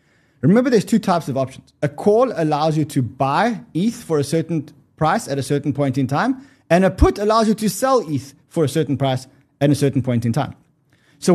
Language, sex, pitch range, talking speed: English, male, 135-190 Hz, 220 wpm